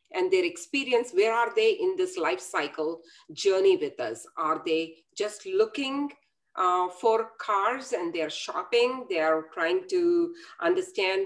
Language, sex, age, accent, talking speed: English, female, 50-69, Indian, 145 wpm